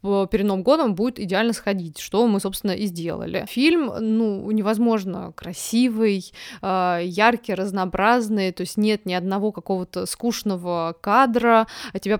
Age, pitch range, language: 20-39, 185-230 Hz, Russian